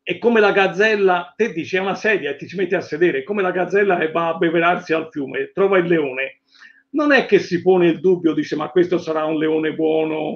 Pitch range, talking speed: 160-215 Hz, 245 wpm